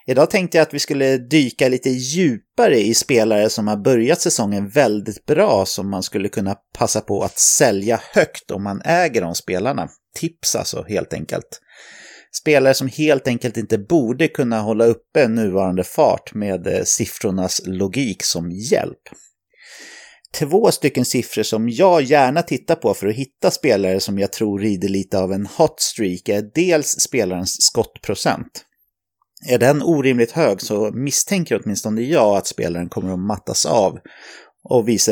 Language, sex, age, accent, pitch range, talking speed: English, male, 30-49, Swedish, 100-140 Hz, 160 wpm